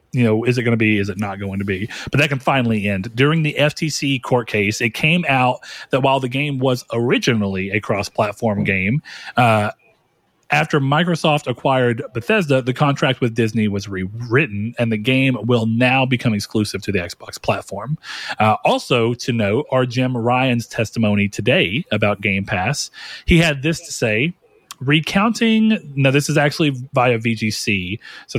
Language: English